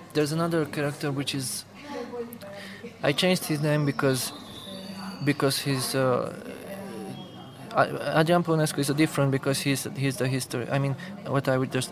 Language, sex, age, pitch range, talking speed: English, male, 20-39, 130-150 Hz, 135 wpm